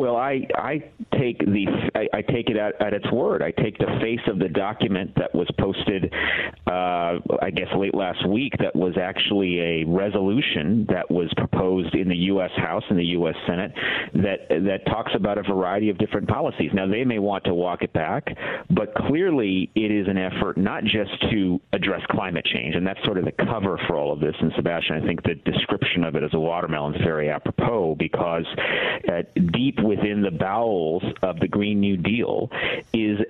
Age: 50-69